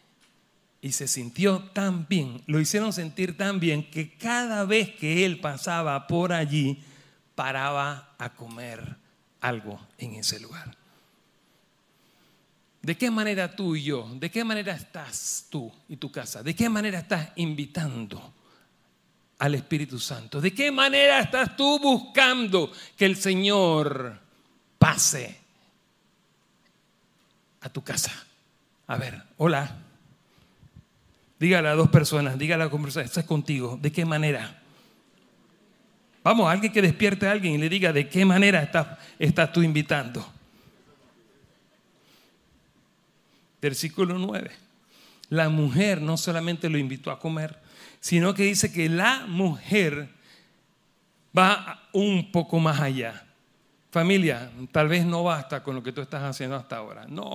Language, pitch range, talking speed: Spanish, 145-190 Hz, 130 wpm